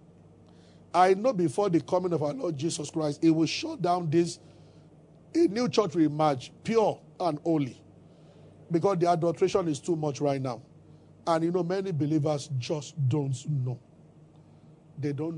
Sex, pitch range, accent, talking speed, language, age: male, 150-185 Hz, Nigerian, 160 wpm, English, 50-69